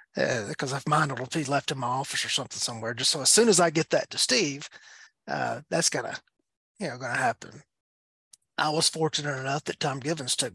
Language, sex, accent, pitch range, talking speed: English, male, American, 125-160 Hz, 220 wpm